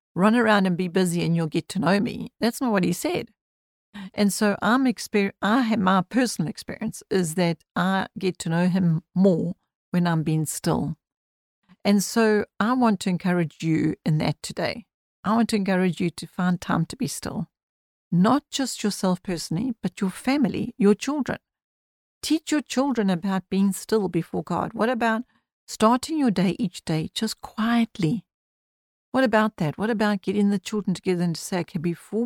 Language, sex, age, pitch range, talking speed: English, female, 50-69, 180-225 Hz, 180 wpm